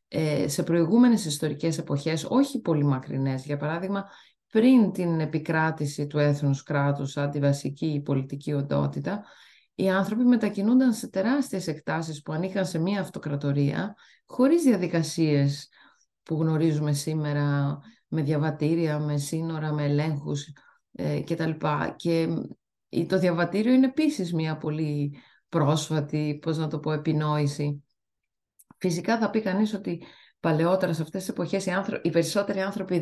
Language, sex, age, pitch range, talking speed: Greek, female, 20-39, 145-190 Hz, 125 wpm